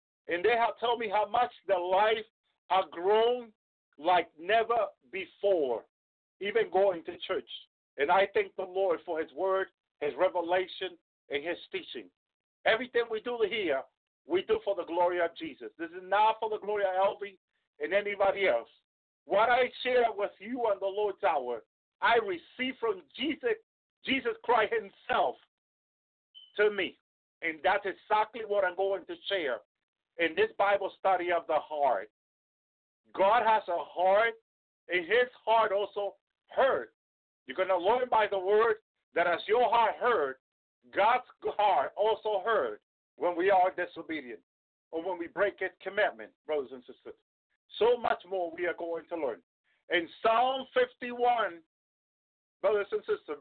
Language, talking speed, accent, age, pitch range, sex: English, 155 wpm, American, 50-69, 185-245 Hz, male